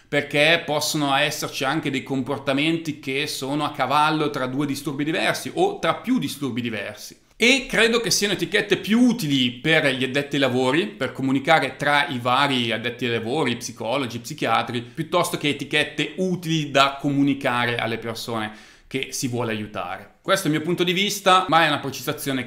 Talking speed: 170 wpm